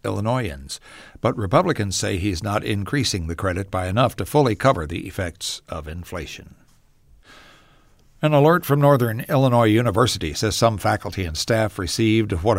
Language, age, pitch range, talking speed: English, 60-79, 95-120 Hz, 145 wpm